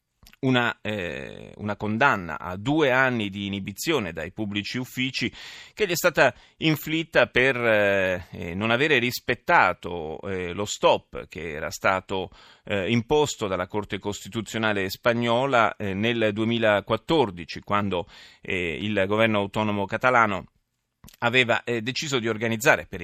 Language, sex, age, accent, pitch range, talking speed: Italian, male, 30-49, native, 95-120 Hz, 125 wpm